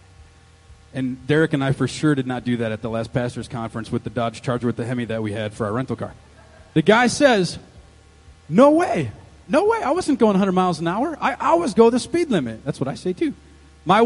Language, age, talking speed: English, 30-49, 235 wpm